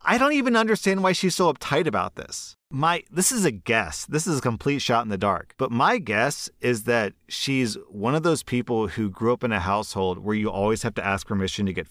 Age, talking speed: 30-49, 240 wpm